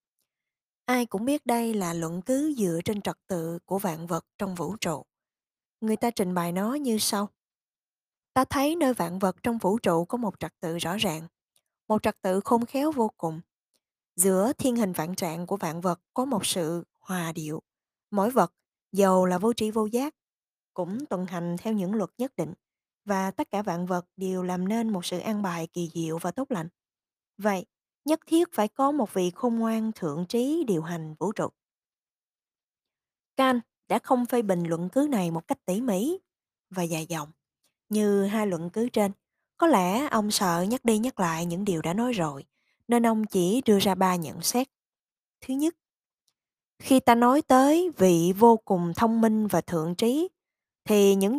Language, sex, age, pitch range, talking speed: Vietnamese, female, 20-39, 175-235 Hz, 190 wpm